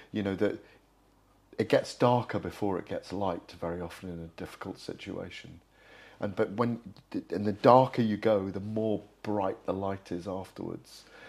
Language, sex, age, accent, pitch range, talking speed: English, male, 40-59, British, 95-115 Hz, 165 wpm